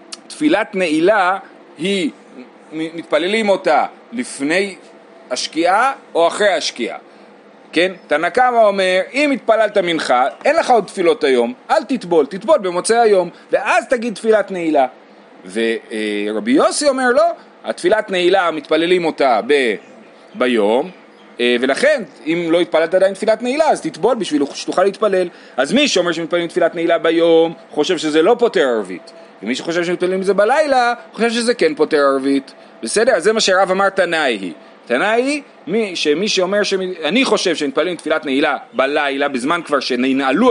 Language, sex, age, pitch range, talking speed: Hebrew, male, 40-59, 145-220 Hz, 140 wpm